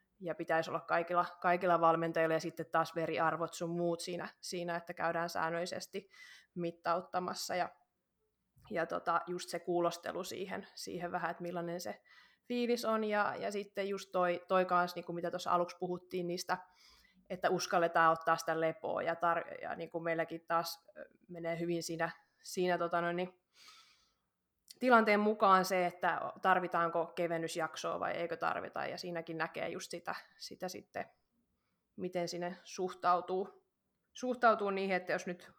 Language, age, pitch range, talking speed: Finnish, 20-39, 170-195 Hz, 150 wpm